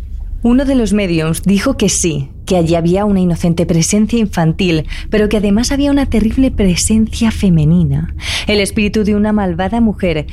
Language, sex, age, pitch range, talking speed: Spanish, female, 20-39, 170-220 Hz, 165 wpm